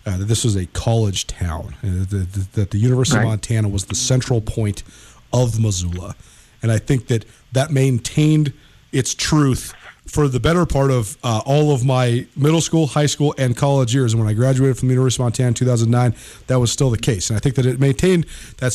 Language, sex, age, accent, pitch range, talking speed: English, male, 40-59, American, 115-145 Hz, 210 wpm